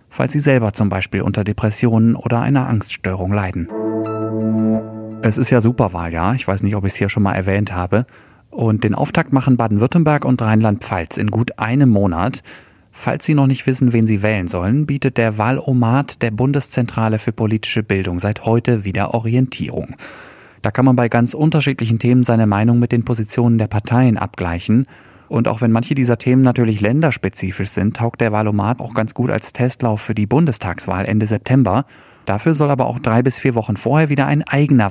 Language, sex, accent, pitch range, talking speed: German, male, German, 105-125 Hz, 185 wpm